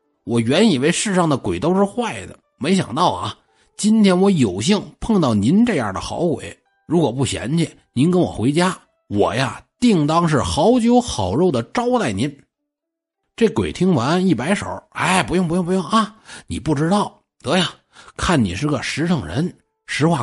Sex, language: male, Chinese